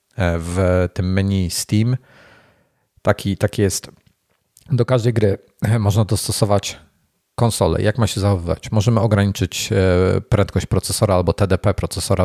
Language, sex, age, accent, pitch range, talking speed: Polish, male, 40-59, native, 95-115 Hz, 120 wpm